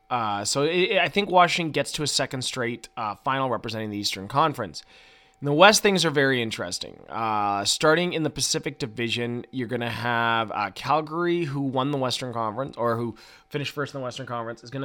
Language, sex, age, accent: English, male, 20-39, American